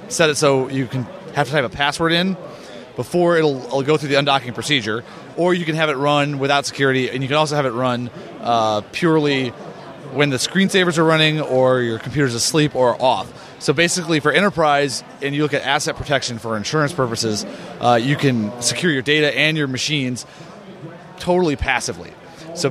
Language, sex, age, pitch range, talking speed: English, male, 30-49, 130-155 Hz, 190 wpm